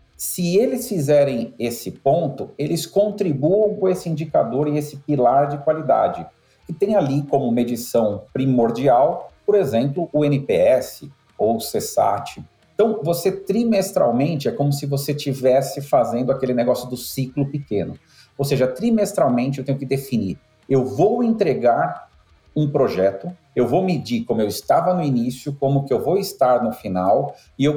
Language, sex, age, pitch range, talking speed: Portuguese, male, 50-69, 135-180 Hz, 155 wpm